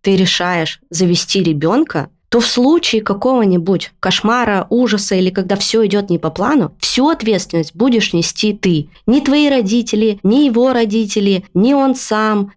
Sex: female